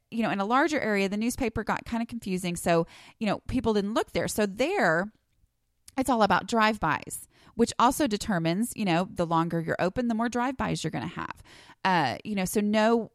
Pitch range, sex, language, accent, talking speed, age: 165-220 Hz, female, English, American, 210 wpm, 30-49